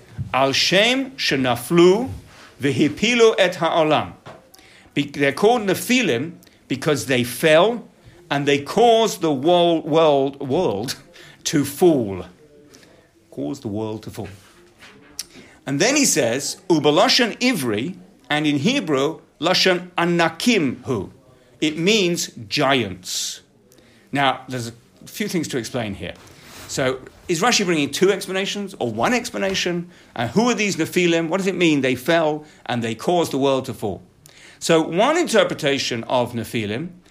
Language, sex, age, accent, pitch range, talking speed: English, male, 50-69, British, 130-175 Hz, 125 wpm